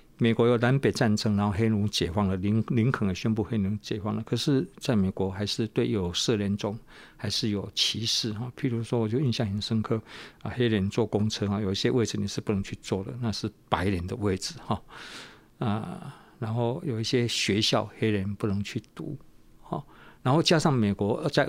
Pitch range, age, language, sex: 105-120 Hz, 50-69, Chinese, male